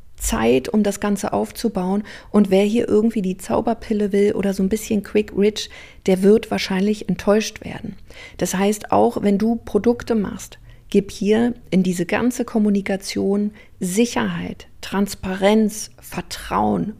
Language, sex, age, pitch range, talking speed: German, female, 40-59, 195-235 Hz, 140 wpm